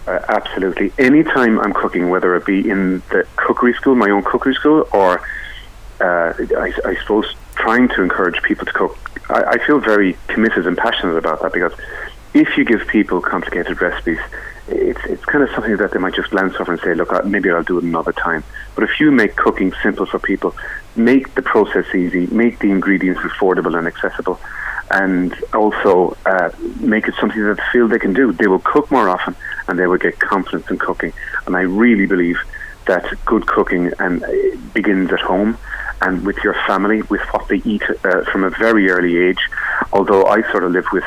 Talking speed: 200 wpm